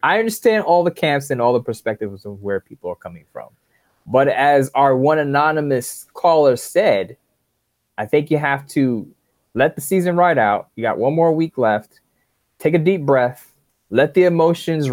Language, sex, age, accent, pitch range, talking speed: English, male, 20-39, American, 125-160 Hz, 180 wpm